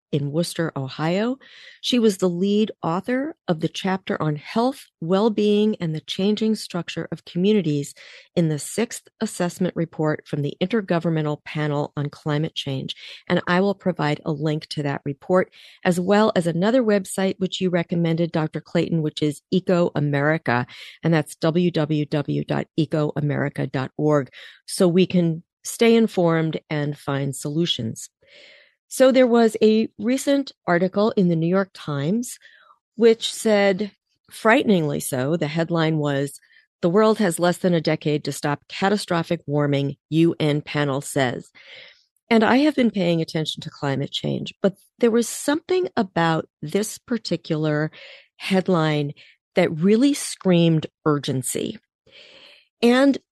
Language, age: English, 40-59